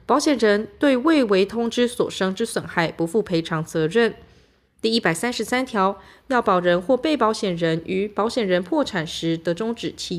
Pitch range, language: 180-245 Hz, Chinese